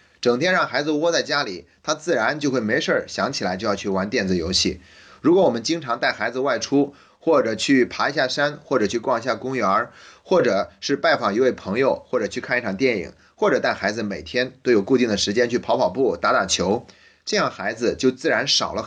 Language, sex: Chinese, male